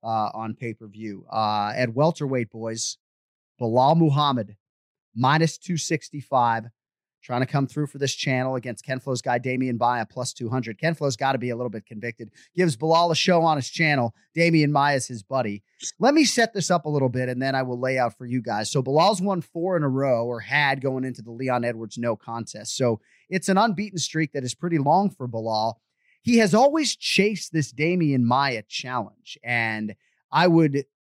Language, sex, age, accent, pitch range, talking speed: English, male, 30-49, American, 120-155 Hz, 190 wpm